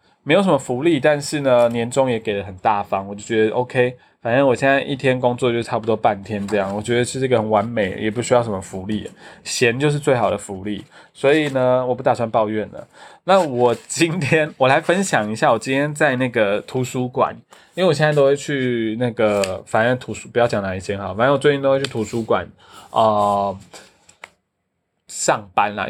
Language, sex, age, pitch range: Chinese, male, 20-39, 110-140 Hz